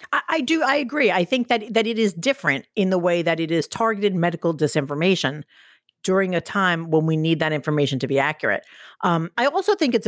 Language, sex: English, female